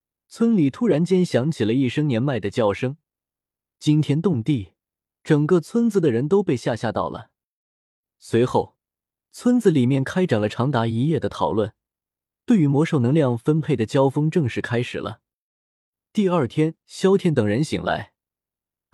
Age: 20-39